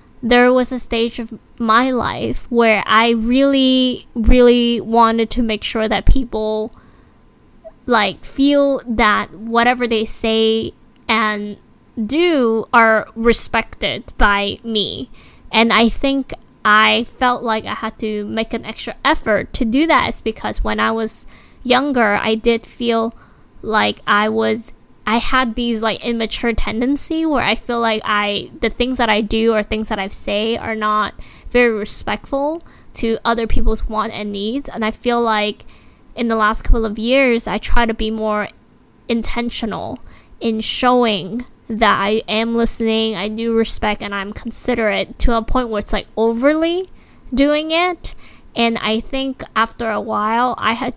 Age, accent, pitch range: 10-29, American, 215-245 Hz